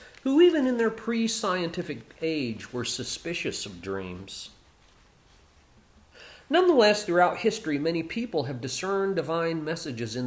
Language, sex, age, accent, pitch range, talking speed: English, male, 40-59, American, 120-190 Hz, 115 wpm